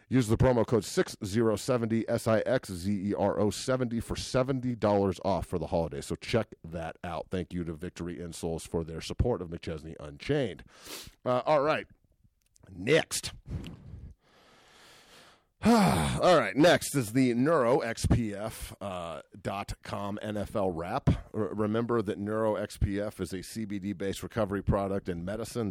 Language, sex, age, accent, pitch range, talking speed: English, male, 40-59, American, 90-110 Hz, 120 wpm